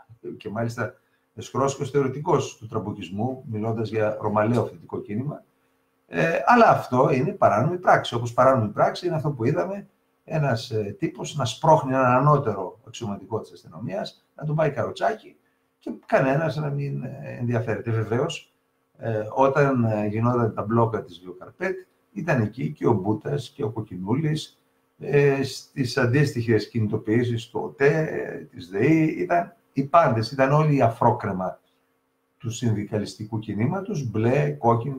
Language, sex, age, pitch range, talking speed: Greek, male, 50-69, 105-145 Hz, 135 wpm